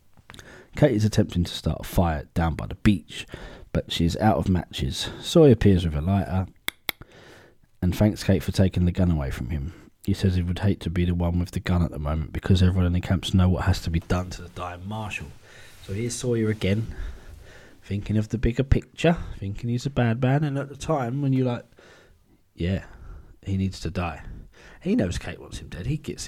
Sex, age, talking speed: male, 20-39, 215 wpm